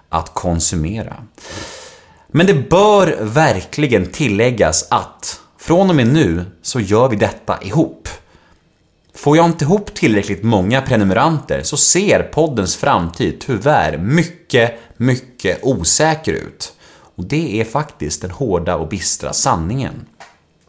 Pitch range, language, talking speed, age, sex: 95-155 Hz, Swedish, 120 wpm, 30-49, male